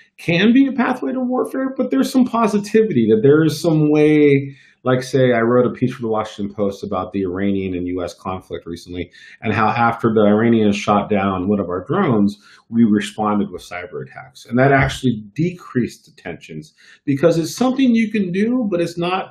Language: English